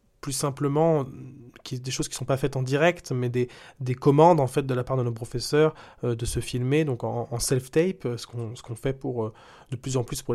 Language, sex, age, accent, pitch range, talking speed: French, male, 20-39, French, 120-145 Hz, 255 wpm